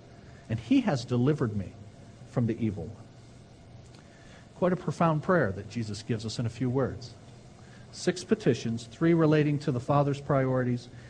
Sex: male